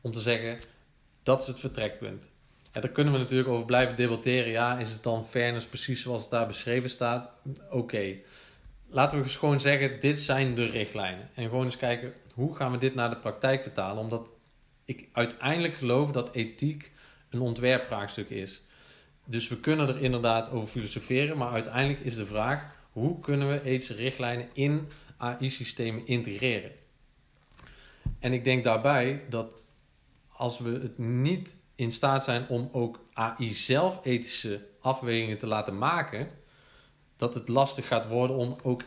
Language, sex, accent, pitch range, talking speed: English, male, Dutch, 115-135 Hz, 165 wpm